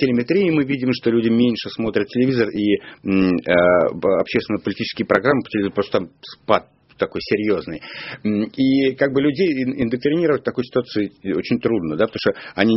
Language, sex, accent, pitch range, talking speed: Russian, male, native, 105-145 Hz, 150 wpm